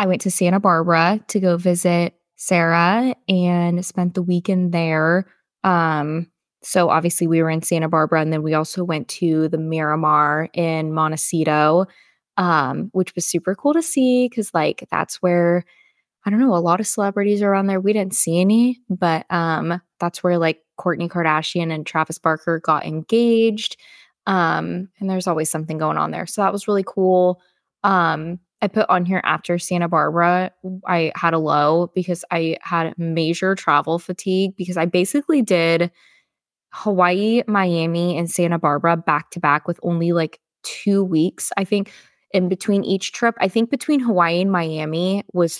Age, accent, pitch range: 20-39, American, 165-205 Hz